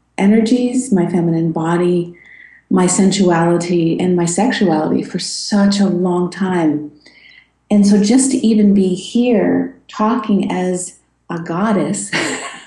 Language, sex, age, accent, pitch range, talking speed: English, female, 50-69, American, 165-205 Hz, 120 wpm